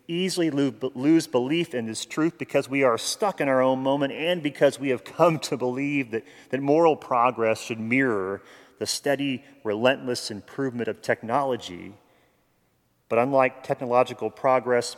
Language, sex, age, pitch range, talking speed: English, male, 40-59, 105-130 Hz, 150 wpm